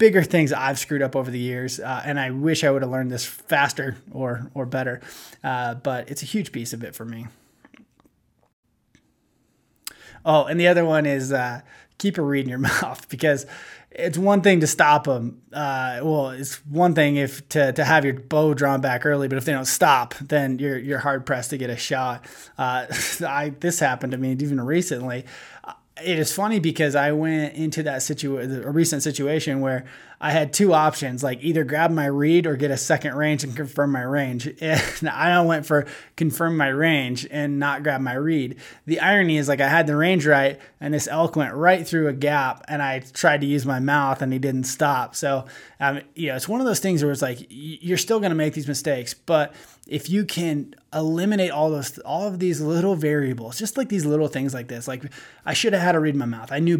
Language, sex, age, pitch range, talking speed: English, male, 20-39, 135-160 Hz, 220 wpm